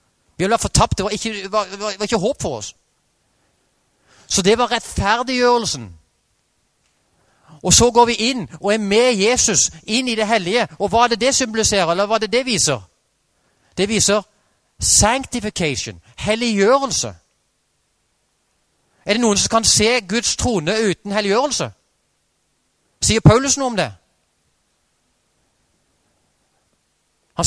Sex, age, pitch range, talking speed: male, 30-49, 145-220 Hz, 120 wpm